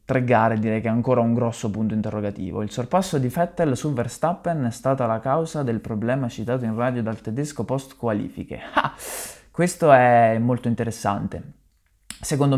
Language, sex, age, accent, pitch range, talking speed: Italian, male, 20-39, native, 110-135 Hz, 155 wpm